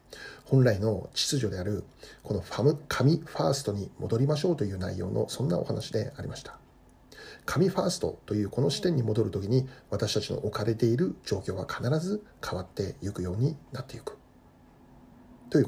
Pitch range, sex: 105-145 Hz, male